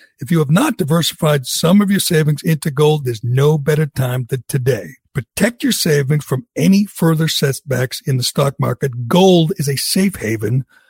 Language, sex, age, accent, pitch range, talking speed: English, male, 60-79, American, 140-175 Hz, 180 wpm